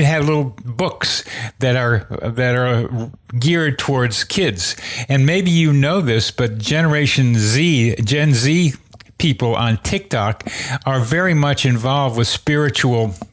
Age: 60-79